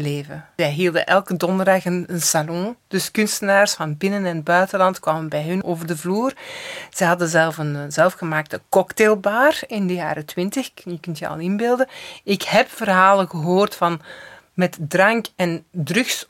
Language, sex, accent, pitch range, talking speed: Dutch, female, Dutch, 165-215 Hz, 160 wpm